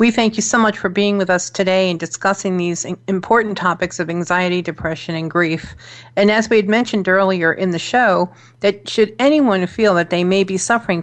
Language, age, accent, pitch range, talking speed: English, 50-69, American, 175-210 Hz, 205 wpm